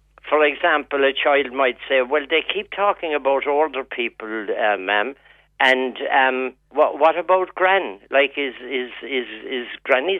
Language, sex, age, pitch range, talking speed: English, male, 60-79, 130-195 Hz, 160 wpm